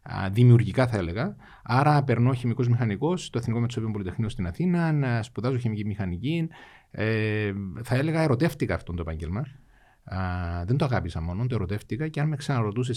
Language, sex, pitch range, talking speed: Greek, male, 105-140 Hz, 155 wpm